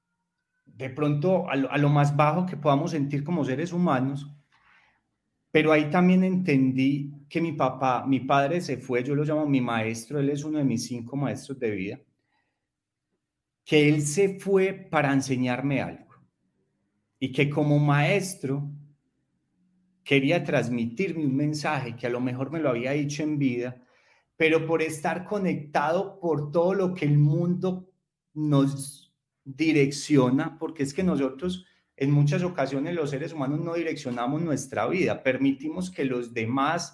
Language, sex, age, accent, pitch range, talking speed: Spanish, male, 30-49, Colombian, 135-165 Hz, 150 wpm